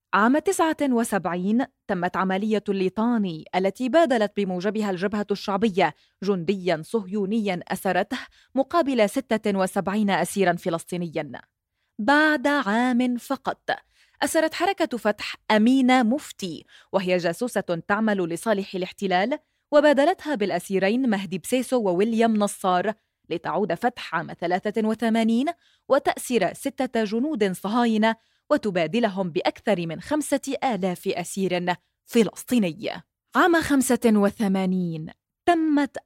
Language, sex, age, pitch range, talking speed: Arabic, female, 20-39, 190-255 Hz, 90 wpm